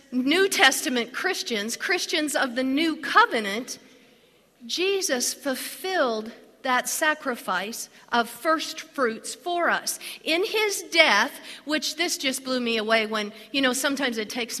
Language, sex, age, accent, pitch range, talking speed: English, female, 50-69, American, 235-325 Hz, 130 wpm